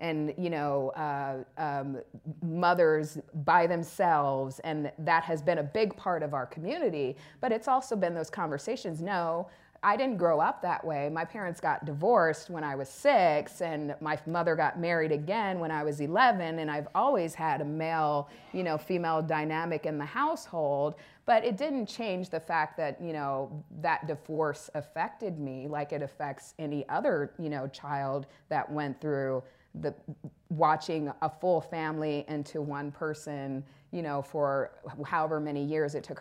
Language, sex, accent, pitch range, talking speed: English, female, American, 145-170 Hz, 170 wpm